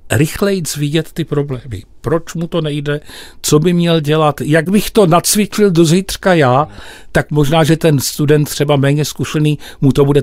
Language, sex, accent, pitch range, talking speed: Czech, male, native, 140-175 Hz, 175 wpm